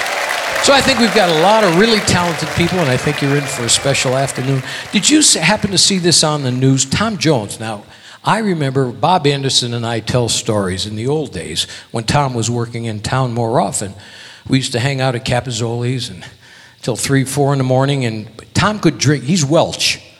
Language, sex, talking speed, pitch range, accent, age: English, male, 210 wpm, 120-165 Hz, American, 60-79